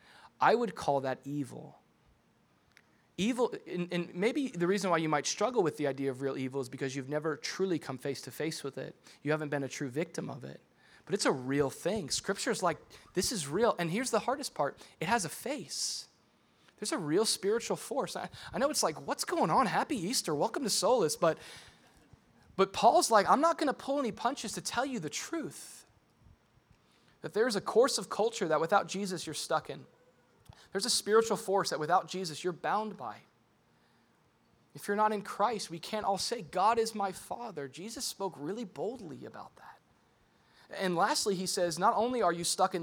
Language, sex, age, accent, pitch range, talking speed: English, male, 20-39, American, 160-220 Hz, 205 wpm